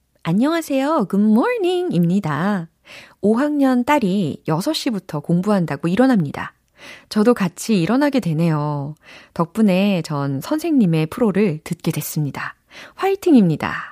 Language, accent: Korean, native